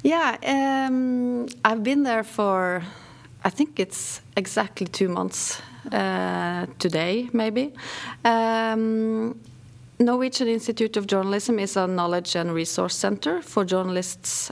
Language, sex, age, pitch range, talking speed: English, female, 30-49, 165-225 Hz, 115 wpm